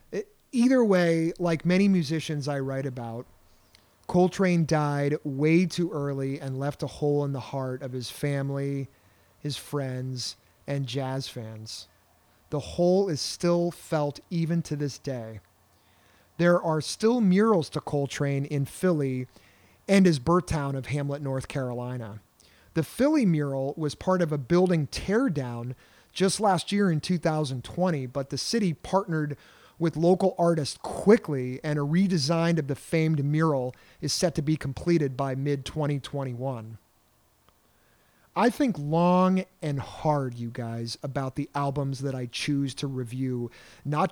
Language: English